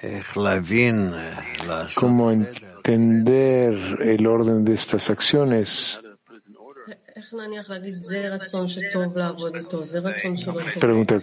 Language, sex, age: Spanish, male, 50-69